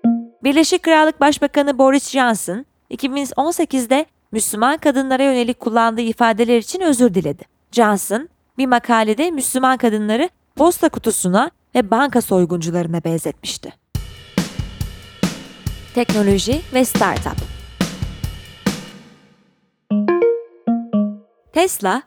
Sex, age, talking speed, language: female, 30-49, 80 wpm, Turkish